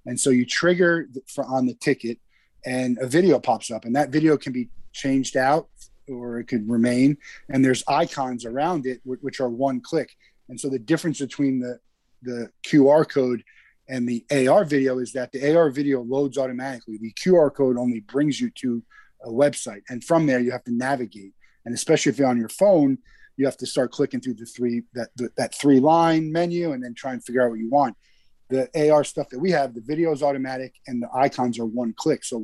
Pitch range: 120-140 Hz